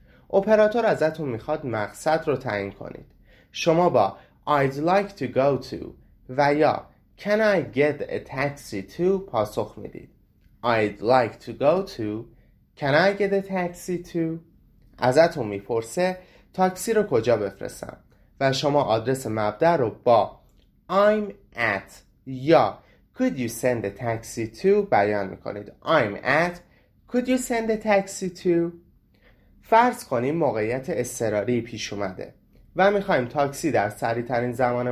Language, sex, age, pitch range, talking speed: Persian, male, 30-49, 105-175 Hz, 135 wpm